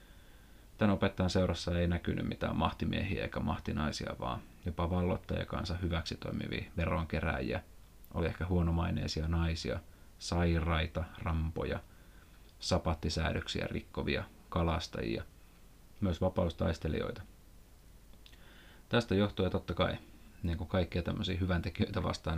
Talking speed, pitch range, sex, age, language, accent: 90 wpm, 85-95 Hz, male, 30-49, Finnish, native